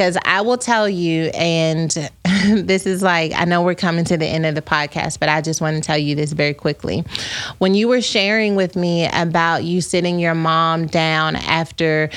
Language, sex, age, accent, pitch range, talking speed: English, female, 30-49, American, 160-185 Hz, 205 wpm